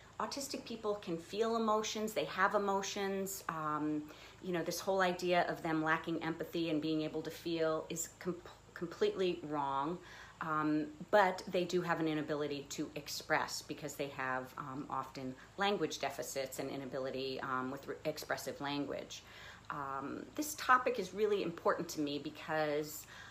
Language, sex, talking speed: English, female, 145 wpm